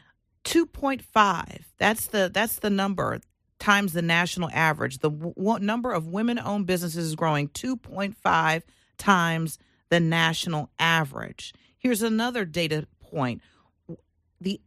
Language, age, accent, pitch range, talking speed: English, 40-59, American, 165-230 Hz, 125 wpm